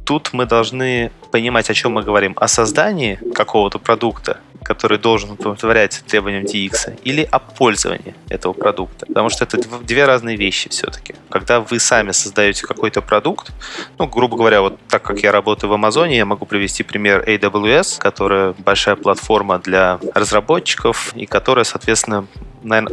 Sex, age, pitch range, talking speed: male, 20-39, 100-115 Hz, 155 wpm